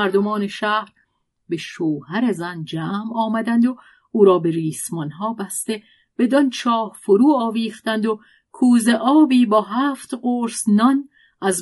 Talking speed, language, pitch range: 135 wpm, Persian, 175-235 Hz